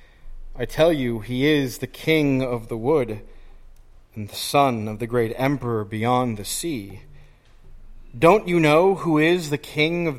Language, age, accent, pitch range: English, 40-59, American, 110-145 Hz